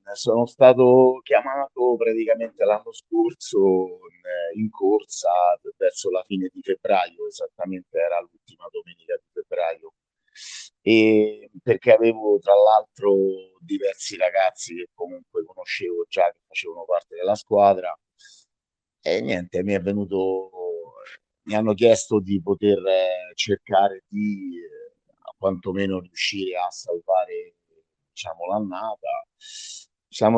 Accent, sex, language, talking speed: native, male, Italian, 115 wpm